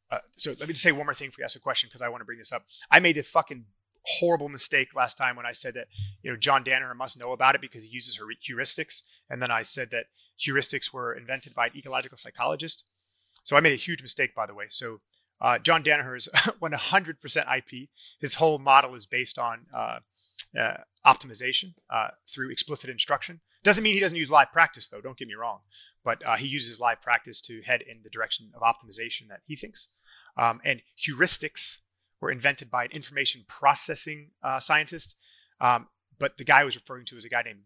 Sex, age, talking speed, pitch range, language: male, 30-49, 220 wpm, 120-150 Hz, English